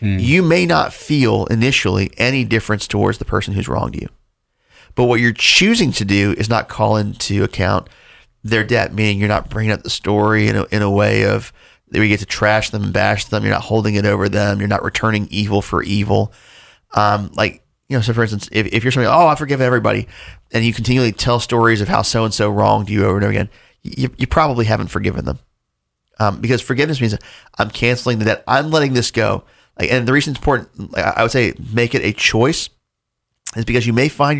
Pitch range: 105-125 Hz